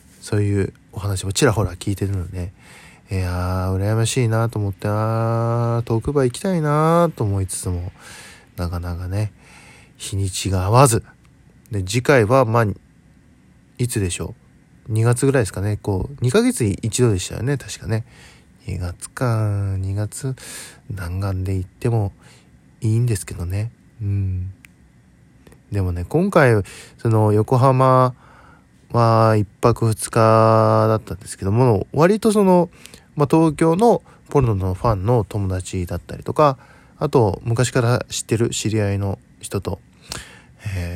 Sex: male